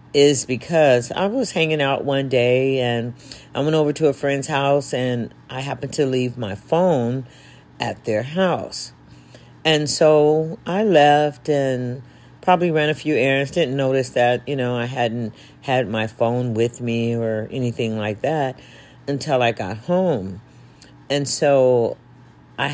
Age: 50-69